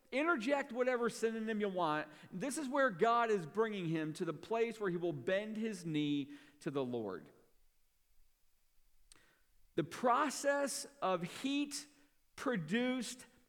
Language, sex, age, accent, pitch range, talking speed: English, male, 50-69, American, 145-225 Hz, 130 wpm